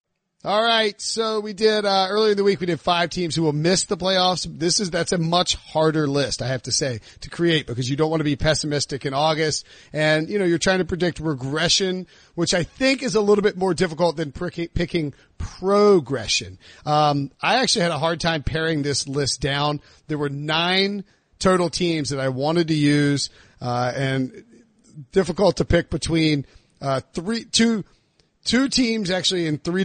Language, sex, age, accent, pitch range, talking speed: English, male, 40-59, American, 135-175 Hz, 190 wpm